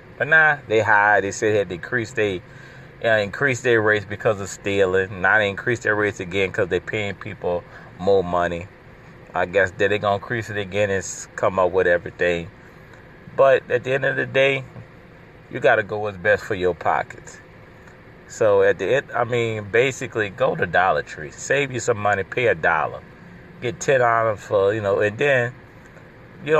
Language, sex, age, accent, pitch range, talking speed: English, male, 30-49, American, 100-130 Hz, 185 wpm